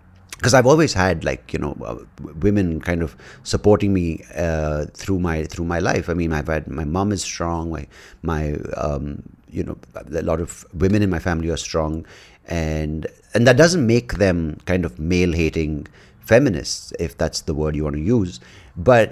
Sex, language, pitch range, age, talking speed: male, English, 80-105 Hz, 30-49, 190 wpm